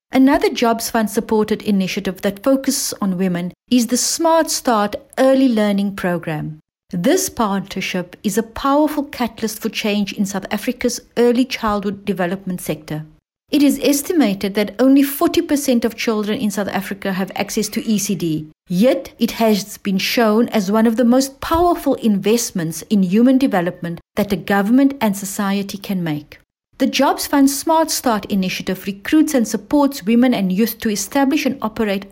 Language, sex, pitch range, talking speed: English, female, 195-260 Hz, 155 wpm